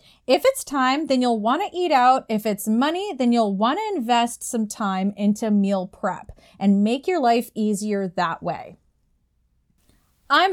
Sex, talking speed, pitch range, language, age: female, 160 wpm, 200-250 Hz, English, 20-39